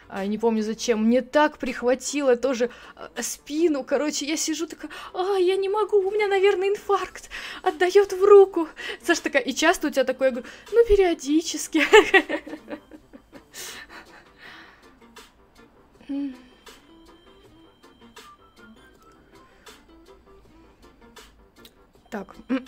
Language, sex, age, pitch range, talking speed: Russian, female, 20-39, 225-300 Hz, 95 wpm